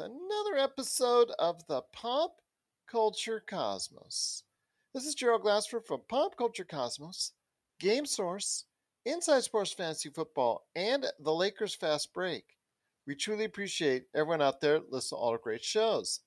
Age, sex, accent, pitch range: 40-59, male, American, 160-225 Hz